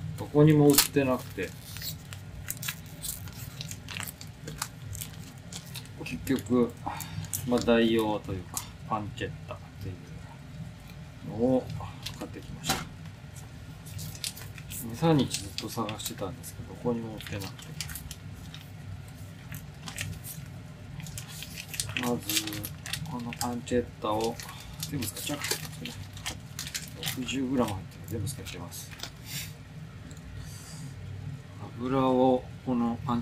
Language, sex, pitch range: Japanese, male, 110-140 Hz